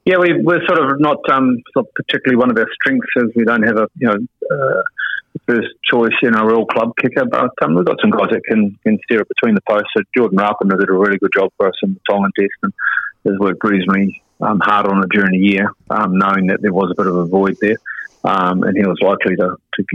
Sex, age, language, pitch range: male, 30-49, English, 95-115 Hz